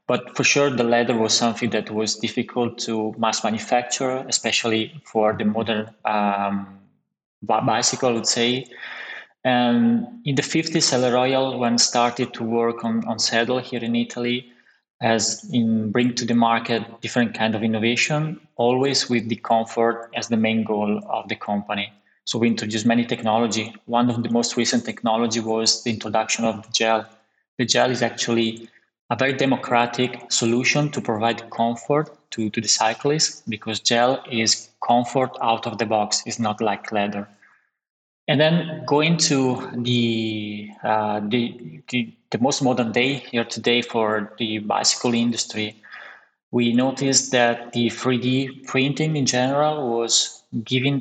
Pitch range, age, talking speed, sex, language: 110-125 Hz, 20-39, 155 wpm, male, English